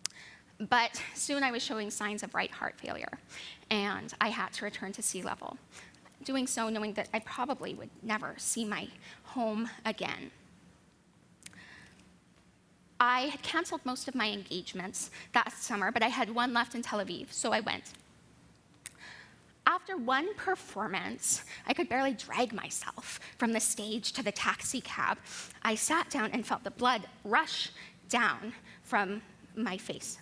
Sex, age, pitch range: female, 10-29, 220-280 Hz